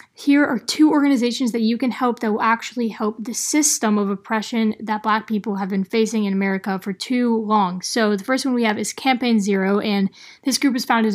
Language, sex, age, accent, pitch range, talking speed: English, female, 10-29, American, 205-250 Hz, 225 wpm